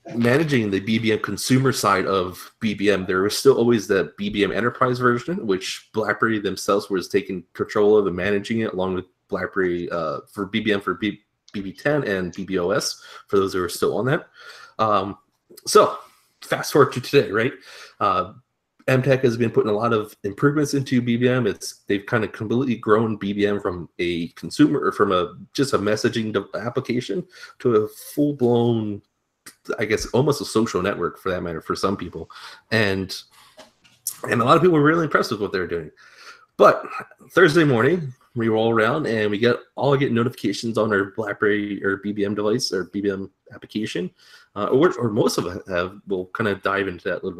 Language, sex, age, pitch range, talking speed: English, male, 30-49, 100-135 Hz, 180 wpm